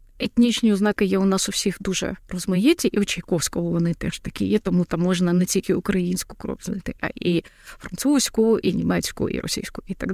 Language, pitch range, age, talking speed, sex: Ukrainian, 195-250 Hz, 20-39, 195 wpm, female